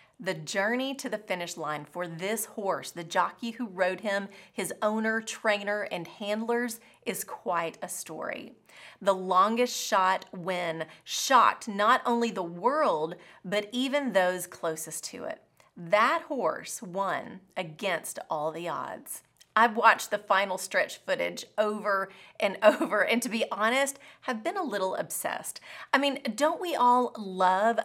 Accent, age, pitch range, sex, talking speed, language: American, 30-49, 185-245 Hz, female, 150 wpm, English